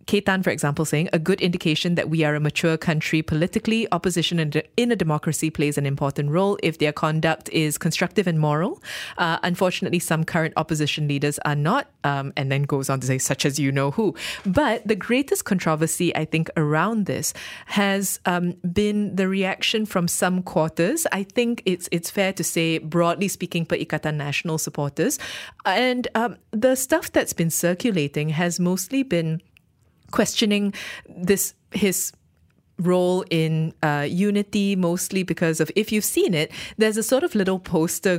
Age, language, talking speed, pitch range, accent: 20-39, English, 170 wpm, 155-195 Hz, Malaysian